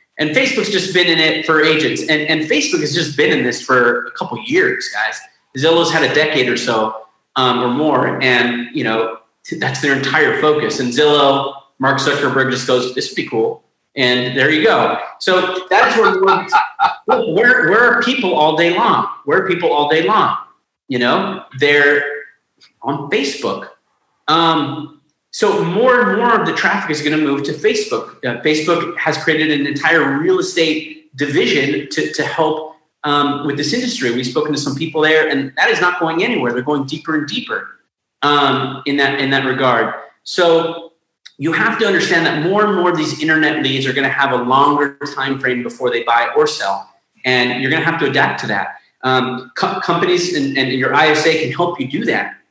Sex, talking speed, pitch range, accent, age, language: male, 195 wpm, 135-165 Hz, American, 30-49, English